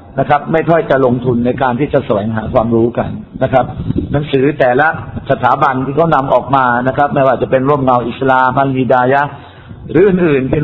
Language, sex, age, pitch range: Thai, male, 60-79, 120-140 Hz